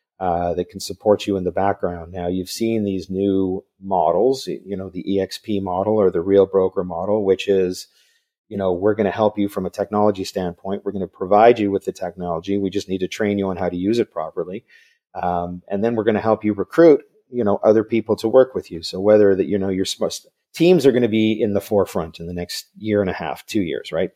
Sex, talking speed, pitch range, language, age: male, 245 wpm, 95-115 Hz, English, 40-59